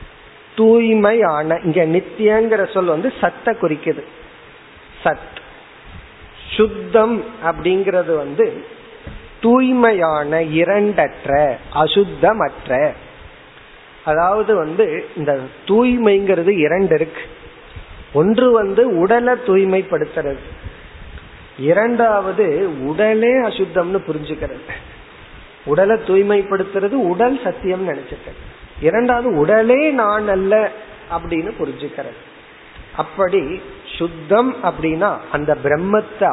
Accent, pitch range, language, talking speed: native, 160-220 Hz, Tamil, 70 wpm